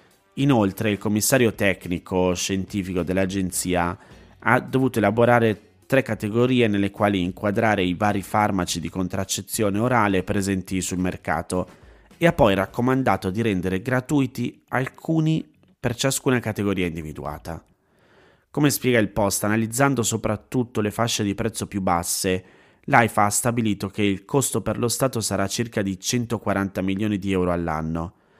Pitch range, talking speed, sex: 95-115 Hz, 135 wpm, male